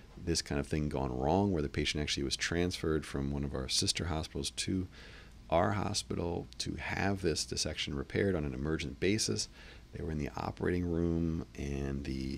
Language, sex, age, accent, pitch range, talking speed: English, male, 40-59, American, 70-85 Hz, 185 wpm